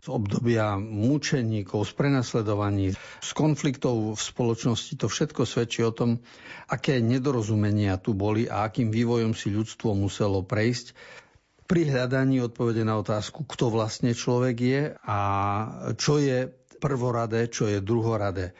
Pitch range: 110-130 Hz